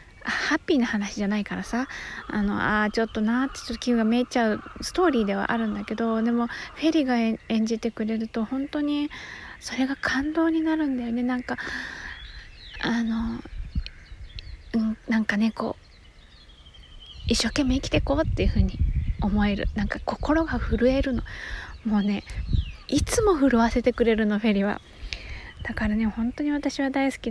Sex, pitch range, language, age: female, 215-300 Hz, Japanese, 20-39